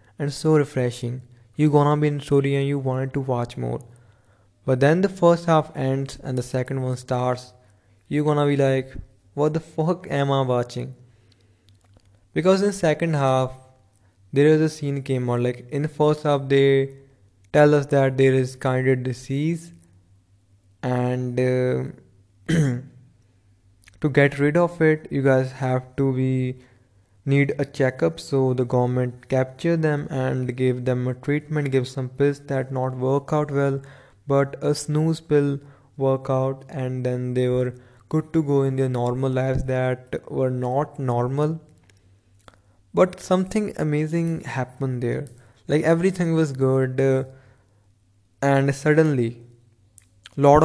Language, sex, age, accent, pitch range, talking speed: English, male, 20-39, Indian, 120-145 Hz, 150 wpm